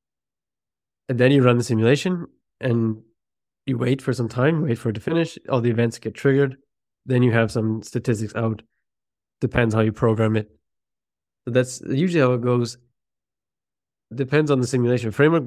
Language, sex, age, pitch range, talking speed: English, male, 20-39, 115-130 Hz, 165 wpm